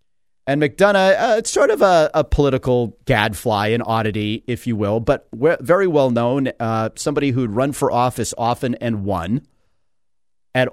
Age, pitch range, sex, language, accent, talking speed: 40-59, 90-135 Hz, male, English, American, 170 wpm